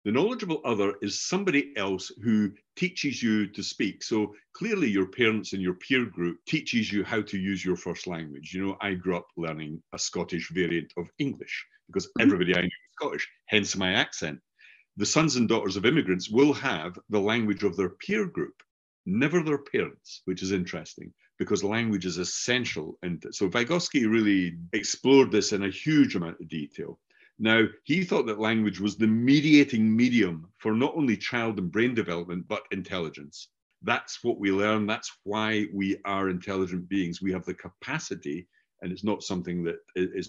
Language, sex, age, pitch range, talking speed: English, male, 50-69, 90-120 Hz, 180 wpm